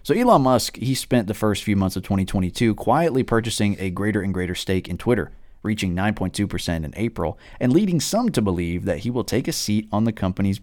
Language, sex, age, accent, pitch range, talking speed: English, male, 30-49, American, 90-110 Hz, 215 wpm